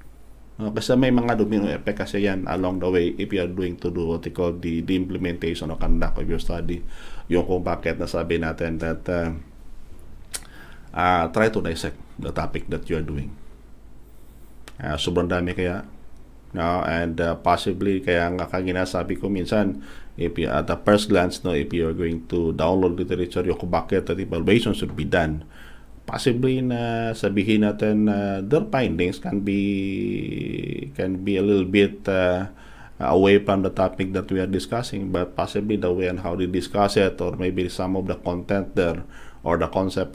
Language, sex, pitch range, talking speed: Filipino, male, 85-100 Hz, 180 wpm